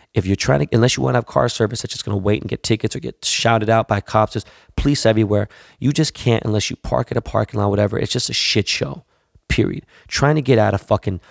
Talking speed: 265 wpm